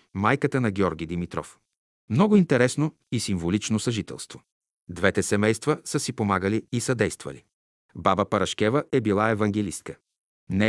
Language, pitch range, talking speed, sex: Bulgarian, 95-120 Hz, 125 wpm, male